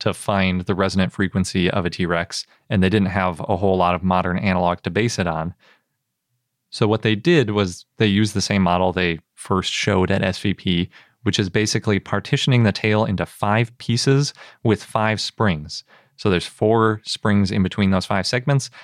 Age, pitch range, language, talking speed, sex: 30-49, 90-110 Hz, English, 185 wpm, male